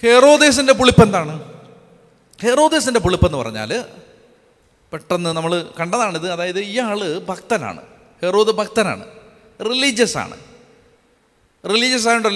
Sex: male